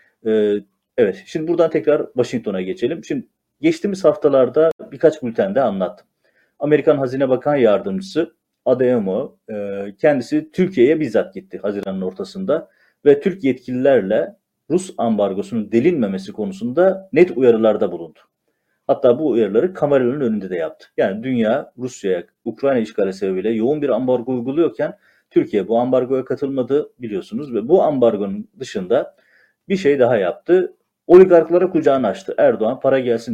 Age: 40-59